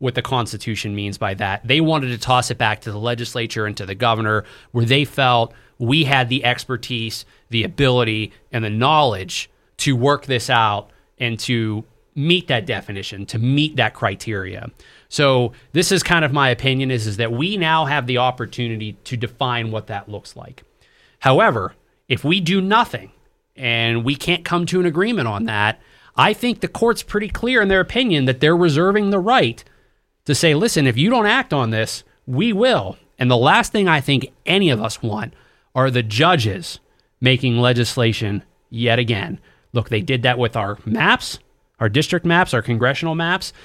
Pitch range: 115-155 Hz